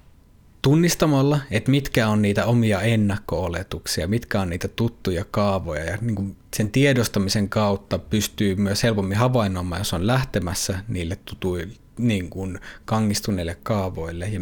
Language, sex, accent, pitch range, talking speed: Finnish, male, native, 95-115 Hz, 120 wpm